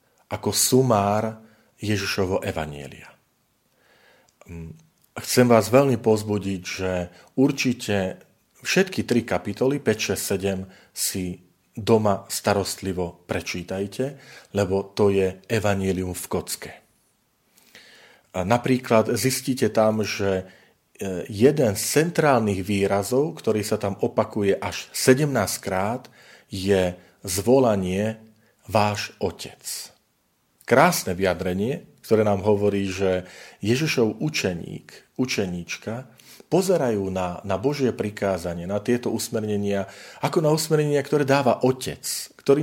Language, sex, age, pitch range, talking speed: Slovak, male, 40-59, 95-120 Hz, 95 wpm